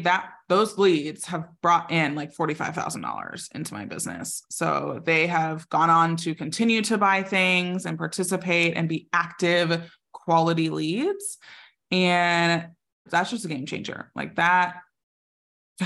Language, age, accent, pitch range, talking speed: English, 20-39, American, 165-185 Hz, 140 wpm